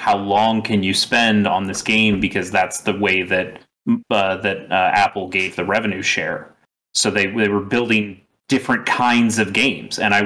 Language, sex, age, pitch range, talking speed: English, male, 30-49, 105-125 Hz, 185 wpm